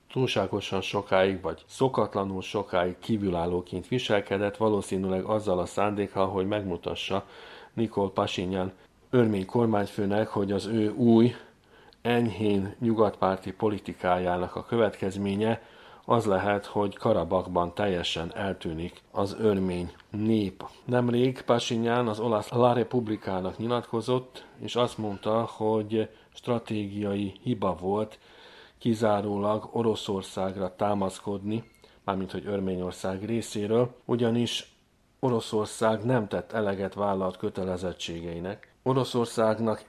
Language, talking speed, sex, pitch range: Hungarian, 95 wpm, male, 95-115 Hz